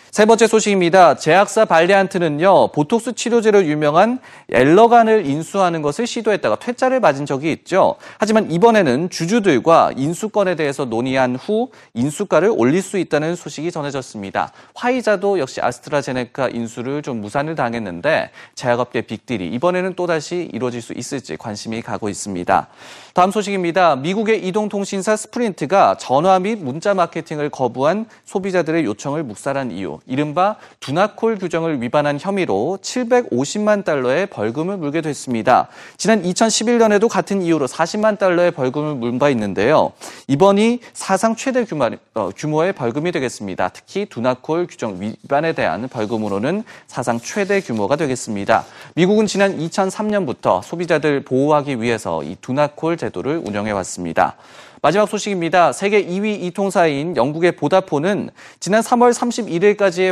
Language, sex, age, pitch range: Korean, male, 30-49, 140-210 Hz